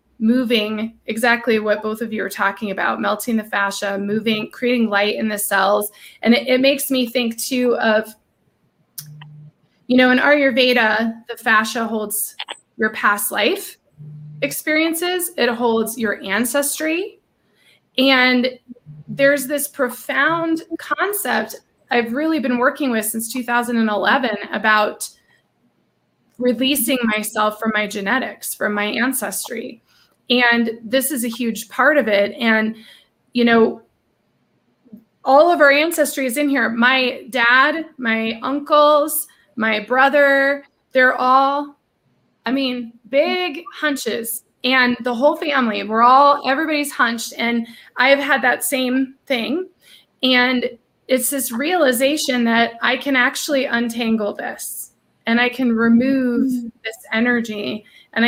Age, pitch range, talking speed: 20-39, 220-275 Hz, 125 wpm